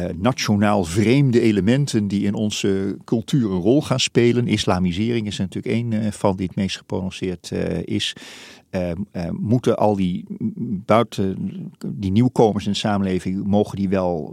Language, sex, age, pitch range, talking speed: Dutch, male, 40-59, 95-125 Hz, 140 wpm